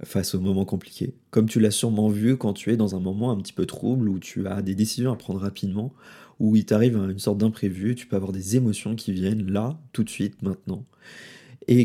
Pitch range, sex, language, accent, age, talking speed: 105-125 Hz, male, French, French, 20-39, 235 wpm